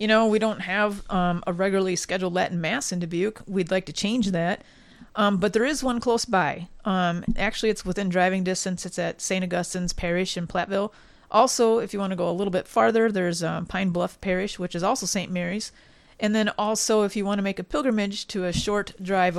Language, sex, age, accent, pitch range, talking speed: English, female, 30-49, American, 180-215 Hz, 225 wpm